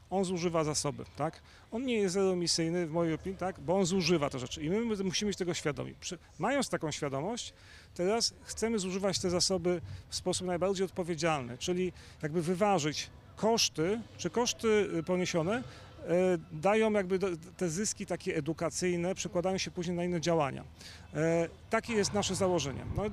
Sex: male